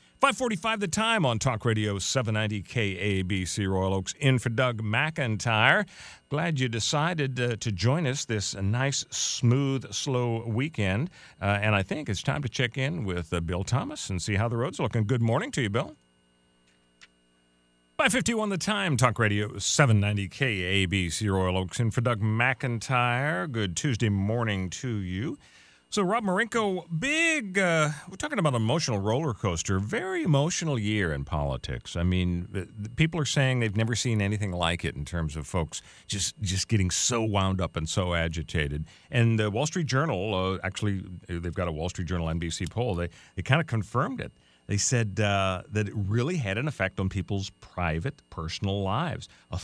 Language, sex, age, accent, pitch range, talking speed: English, male, 40-59, American, 95-135 Hz, 175 wpm